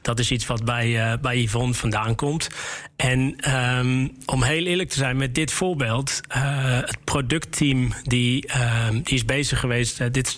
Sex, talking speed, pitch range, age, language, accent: male, 180 wpm, 125-145 Hz, 40-59, Dutch, Dutch